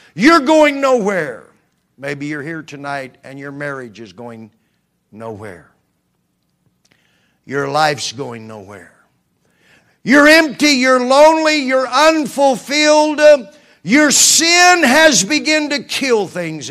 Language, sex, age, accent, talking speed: English, male, 50-69, American, 110 wpm